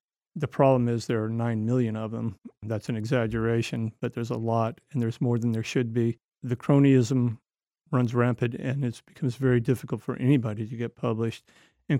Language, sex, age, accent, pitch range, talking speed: English, male, 40-59, American, 120-135 Hz, 190 wpm